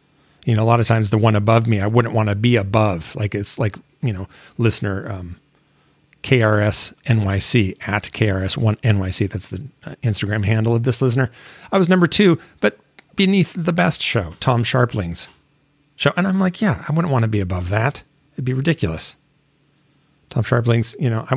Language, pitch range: English, 110-145 Hz